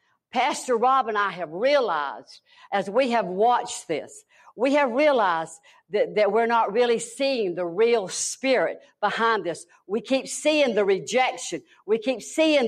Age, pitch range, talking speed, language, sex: 60-79, 205-280 Hz, 155 wpm, English, female